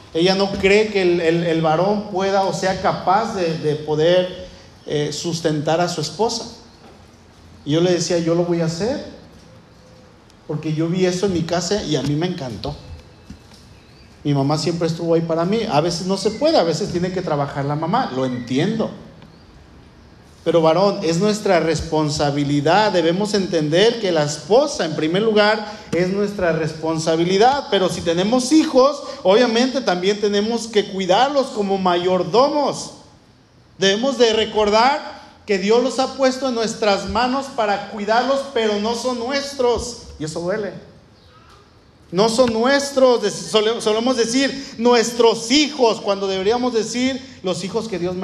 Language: Spanish